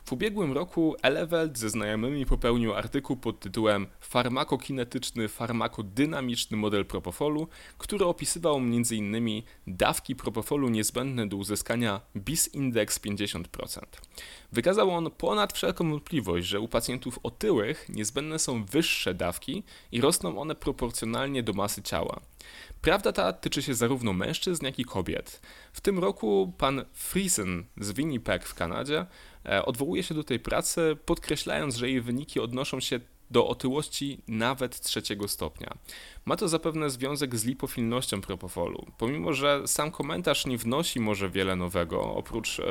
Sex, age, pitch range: male, 20-39, 105-145 Hz